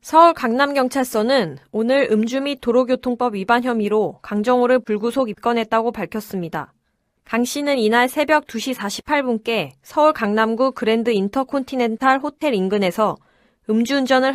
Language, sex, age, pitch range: Korean, female, 20-39, 215-275 Hz